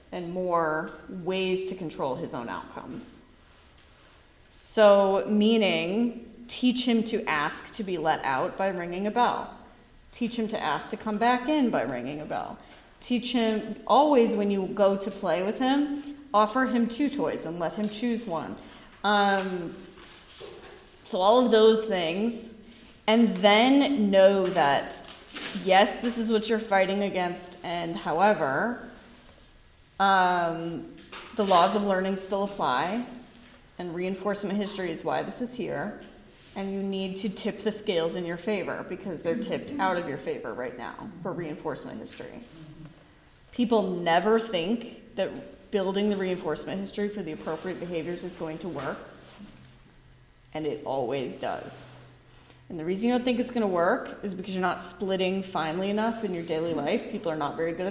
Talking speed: 160 wpm